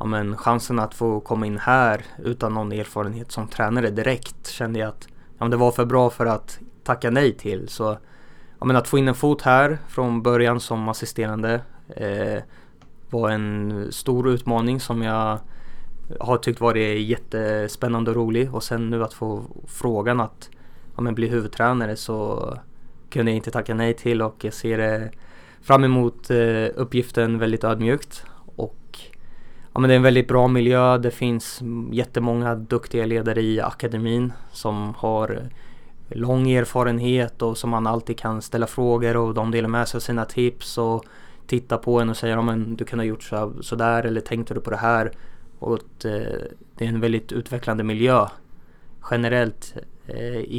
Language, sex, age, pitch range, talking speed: Swedish, male, 20-39, 110-125 Hz, 170 wpm